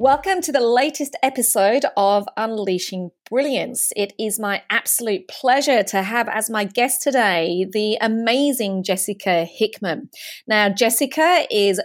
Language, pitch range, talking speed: English, 185-245 Hz, 130 wpm